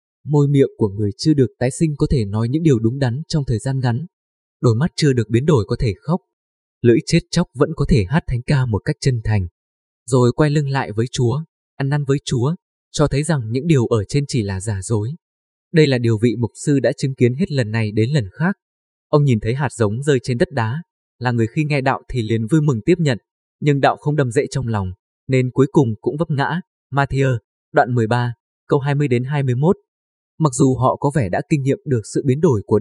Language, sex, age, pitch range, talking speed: Vietnamese, male, 20-39, 115-150 Hz, 240 wpm